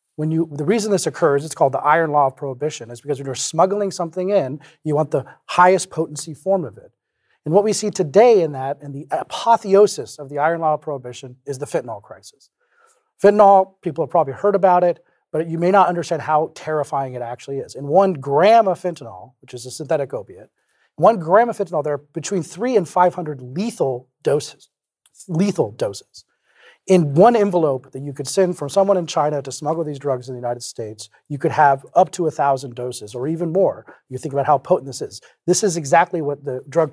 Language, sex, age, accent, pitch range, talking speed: English, male, 40-59, American, 135-185 Hz, 215 wpm